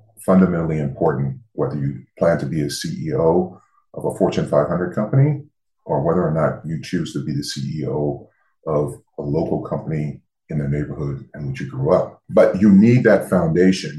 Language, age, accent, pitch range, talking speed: English, 40-59, American, 75-105 Hz, 175 wpm